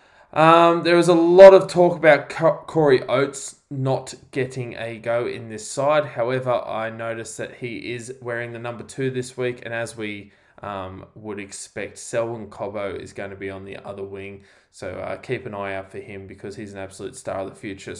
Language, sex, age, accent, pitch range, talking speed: English, male, 20-39, Australian, 105-135 Hz, 205 wpm